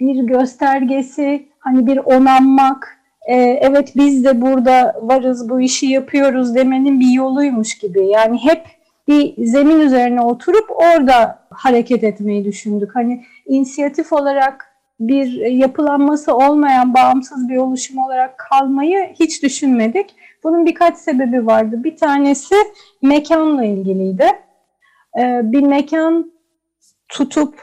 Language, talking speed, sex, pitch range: Turkish, 110 wpm, female, 255-320 Hz